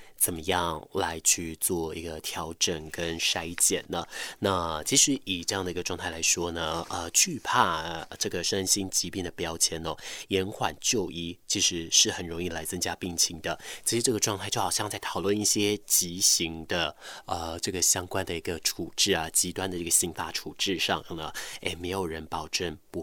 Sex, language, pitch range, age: male, Chinese, 80-95 Hz, 20-39